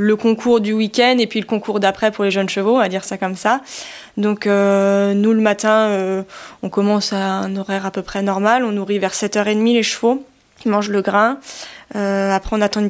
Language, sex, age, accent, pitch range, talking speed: French, female, 20-39, French, 190-215 Hz, 230 wpm